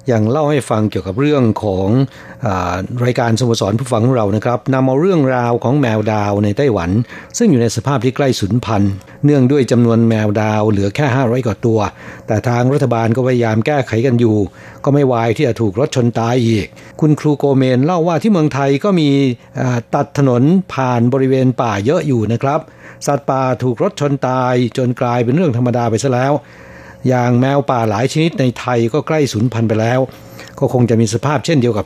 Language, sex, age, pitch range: Thai, male, 60-79, 115-140 Hz